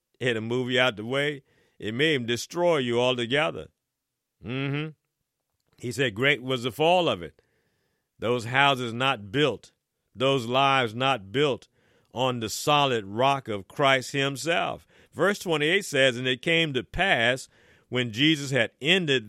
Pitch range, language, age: 125-150 Hz, English, 50-69